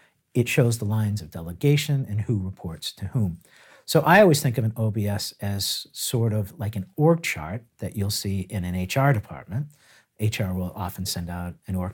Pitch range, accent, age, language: 95-120 Hz, American, 50-69, English